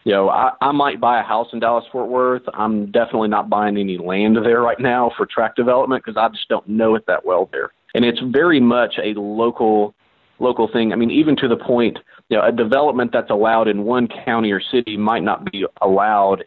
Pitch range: 105-120 Hz